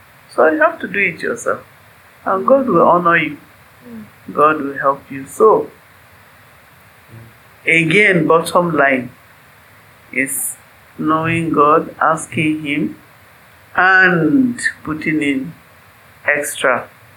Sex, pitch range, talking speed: male, 130-170 Hz, 100 wpm